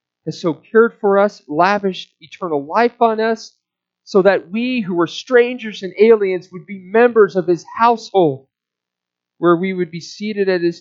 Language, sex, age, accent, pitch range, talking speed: English, male, 40-59, American, 130-200 Hz, 170 wpm